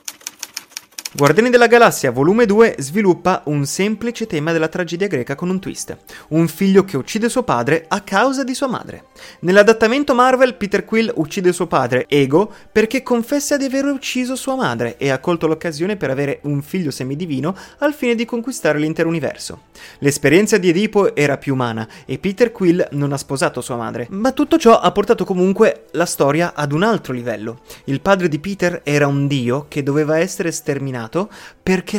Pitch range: 140-220 Hz